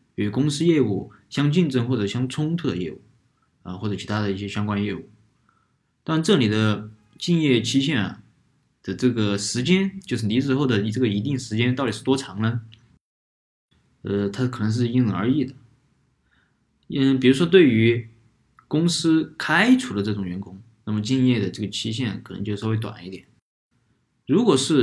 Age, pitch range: 20-39, 105-135 Hz